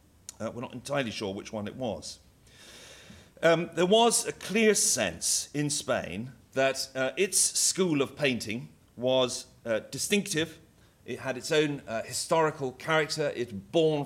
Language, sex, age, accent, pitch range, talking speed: English, male, 40-59, British, 120-155 Hz, 150 wpm